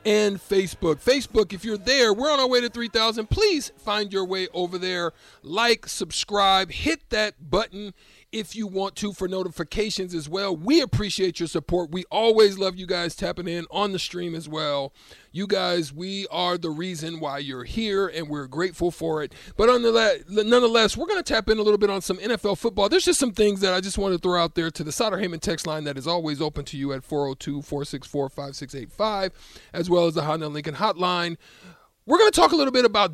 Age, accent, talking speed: 40-59, American, 210 wpm